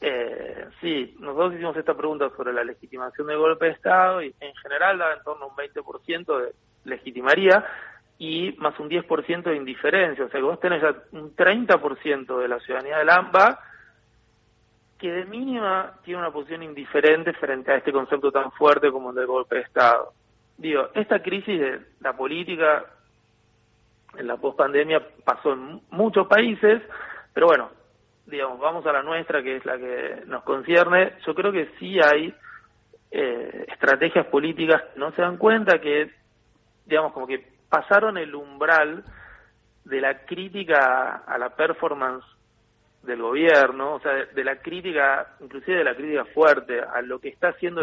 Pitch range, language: 130-180 Hz, Spanish